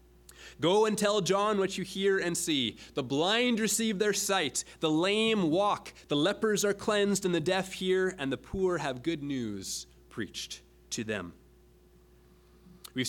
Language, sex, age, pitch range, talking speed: English, male, 30-49, 120-185 Hz, 160 wpm